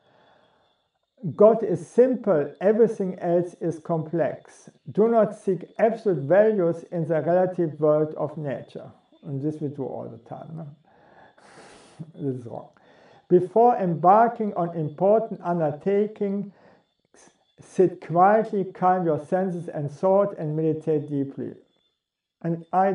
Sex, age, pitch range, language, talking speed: male, 50-69, 155-195 Hz, English, 120 wpm